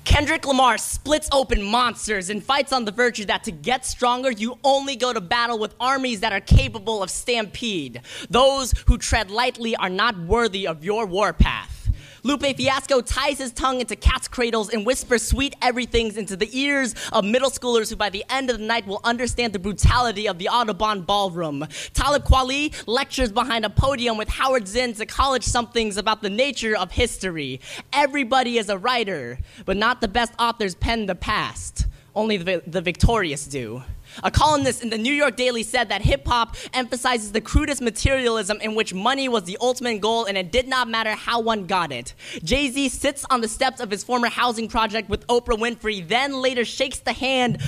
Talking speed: 190 wpm